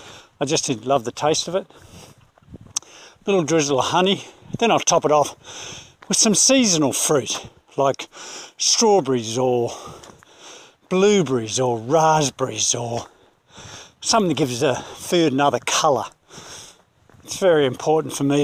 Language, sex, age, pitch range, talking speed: English, male, 50-69, 140-190 Hz, 130 wpm